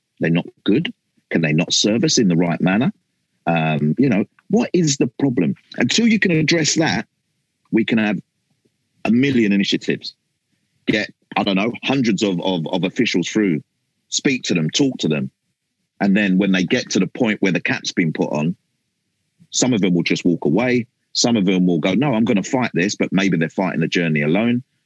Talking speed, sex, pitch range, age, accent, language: 205 wpm, male, 85-120 Hz, 40-59, British, English